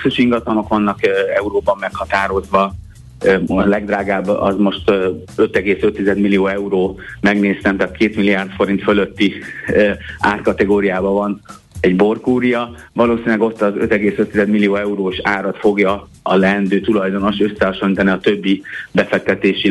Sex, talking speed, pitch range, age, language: male, 125 wpm, 100-115 Hz, 30-49, Hungarian